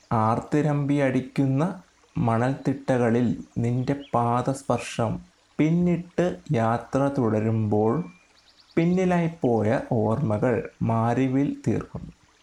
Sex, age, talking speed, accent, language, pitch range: male, 30-49, 60 wpm, native, Malayalam, 115-150 Hz